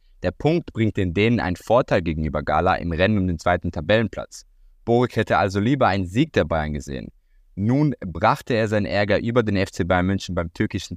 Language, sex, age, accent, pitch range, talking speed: German, male, 20-39, German, 90-115 Hz, 195 wpm